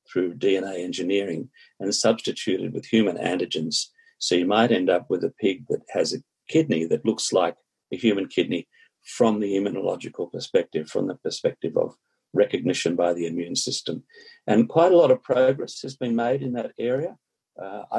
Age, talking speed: 50-69, 175 wpm